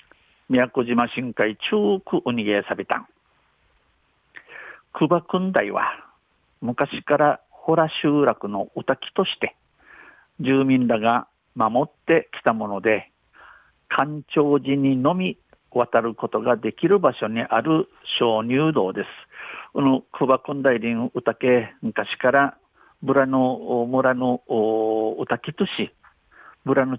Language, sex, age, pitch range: Japanese, male, 50-69, 115-145 Hz